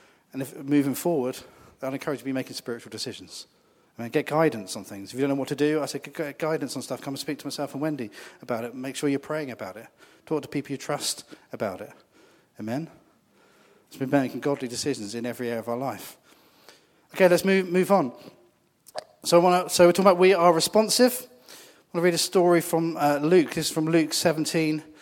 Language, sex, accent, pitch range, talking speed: English, male, British, 125-155 Hz, 230 wpm